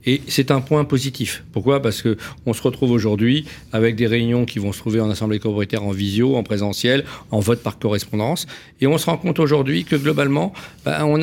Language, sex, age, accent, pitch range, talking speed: French, male, 50-69, French, 115-145 Hz, 215 wpm